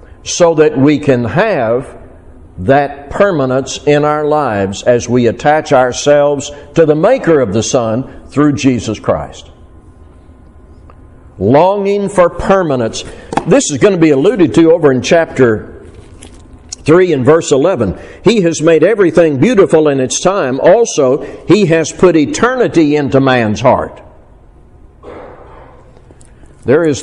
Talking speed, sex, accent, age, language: 130 wpm, male, American, 60-79, English